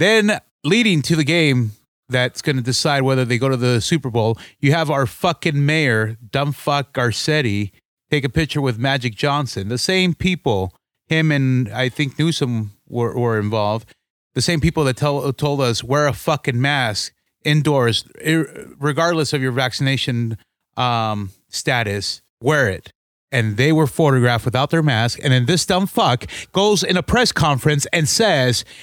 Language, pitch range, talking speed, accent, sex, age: English, 125-170 Hz, 165 wpm, American, male, 30-49